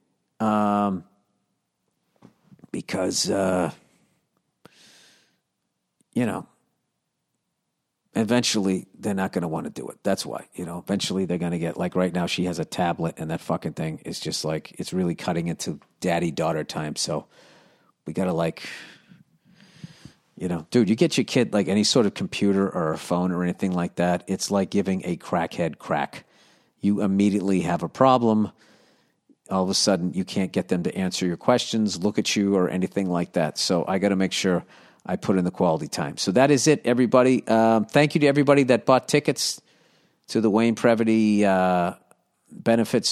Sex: male